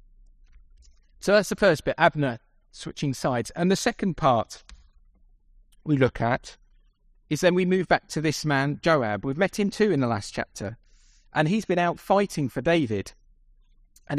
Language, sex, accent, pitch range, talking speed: English, male, British, 130-185 Hz, 170 wpm